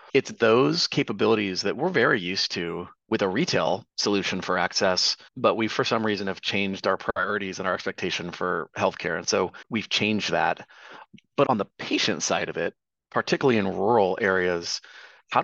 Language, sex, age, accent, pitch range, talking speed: English, male, 30-49, American, 95-110 Hz, 175 wpm